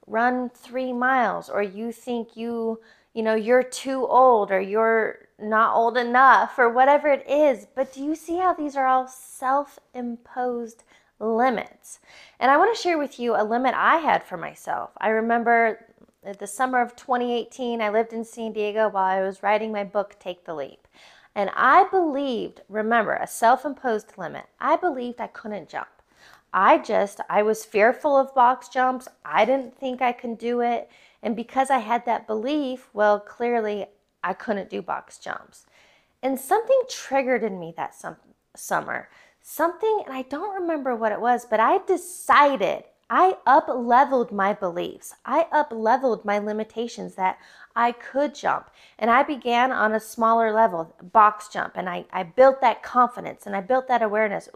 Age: 20-39